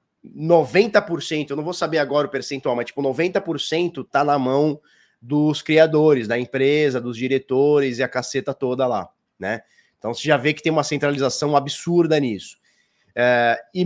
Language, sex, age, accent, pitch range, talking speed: Portuguese, male, 20-39, Brazilian, 140-175 Hz, 165 wpm